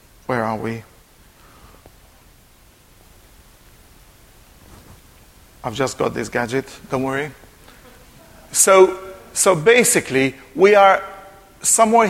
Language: English